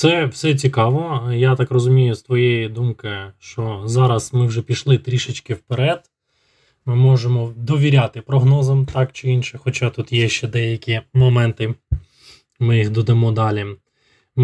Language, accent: Ukrainian, native